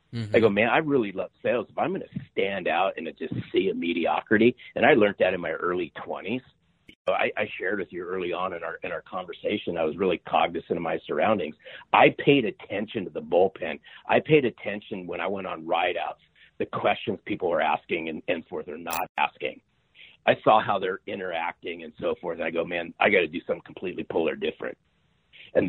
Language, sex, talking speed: English, male, 215 wpm